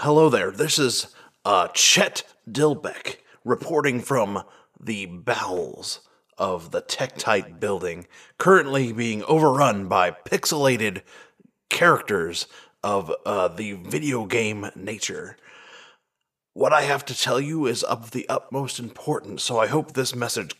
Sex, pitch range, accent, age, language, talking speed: male, 110-150 Hz, American, 30-49, English, 125 wpm